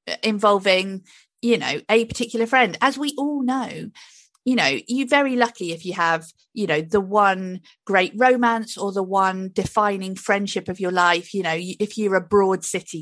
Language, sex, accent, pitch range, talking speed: English, female, British, 180-230 Hz, 180 wpm